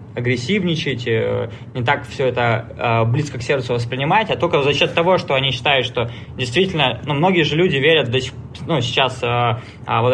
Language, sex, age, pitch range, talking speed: Russian, male, 20-39, 120-160 Hz, 165 wpm